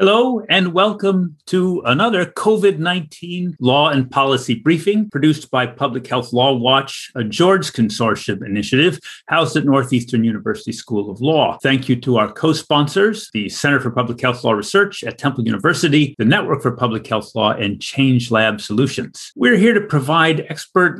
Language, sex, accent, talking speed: English, male, American, 170 wpm